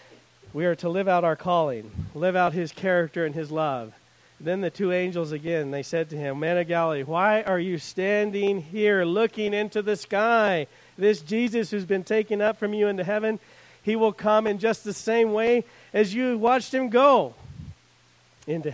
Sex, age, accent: male, 50-69, American